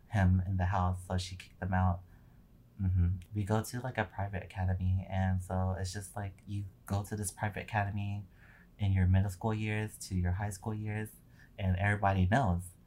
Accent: American